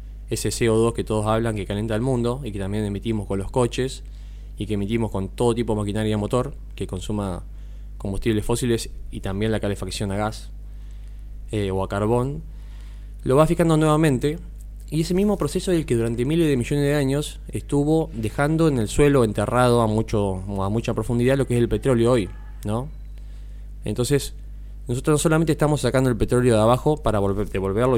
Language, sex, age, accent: Spanish, male, 20-39, Argentinian